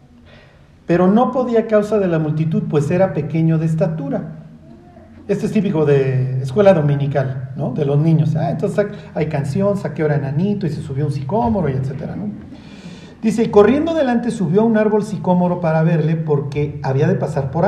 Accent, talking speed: Mexican, 185 wpm